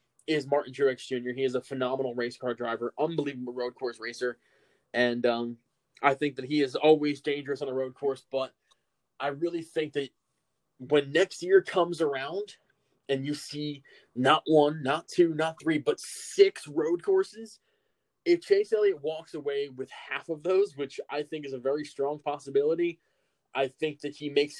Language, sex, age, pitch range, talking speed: English, male, 20-39, 130-160 Hz, 180 wpm